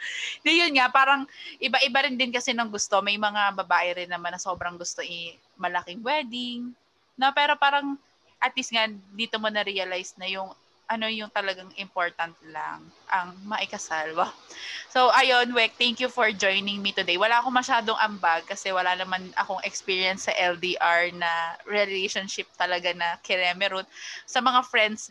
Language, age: English, 20-39